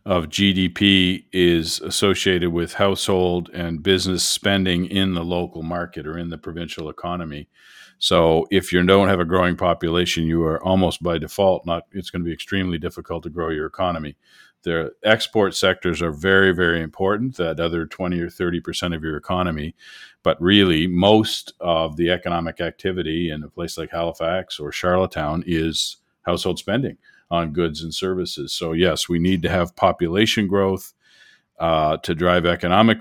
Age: 50-69